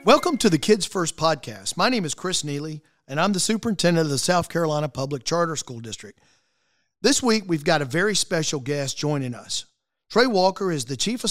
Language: English